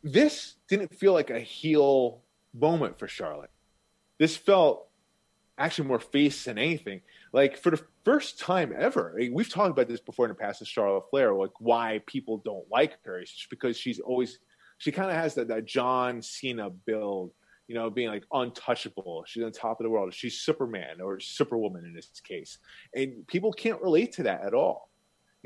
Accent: American